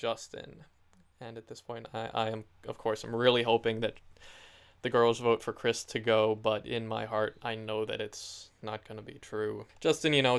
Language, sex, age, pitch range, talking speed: English, male, 20-39, 110-125 Hz, 215 wpm